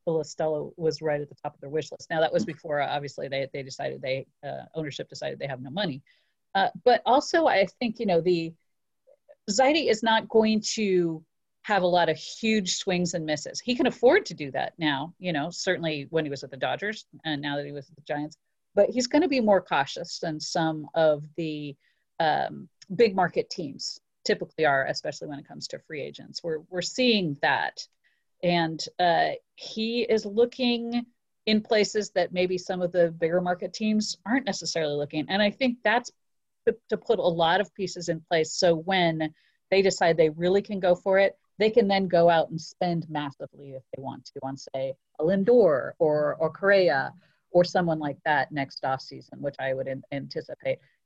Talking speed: 200 wpm